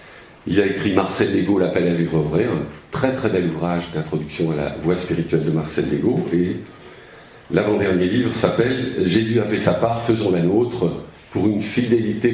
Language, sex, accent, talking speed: French, male, French, 185 wpm